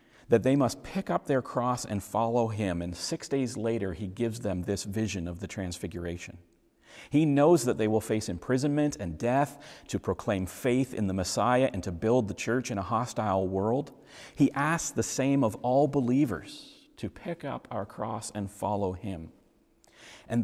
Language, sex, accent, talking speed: English, male, American, 180 wpm